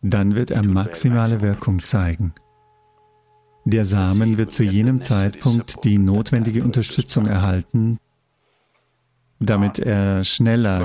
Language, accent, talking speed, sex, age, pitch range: English, German, 105 wpm, male, 50-69, 100-125 Hz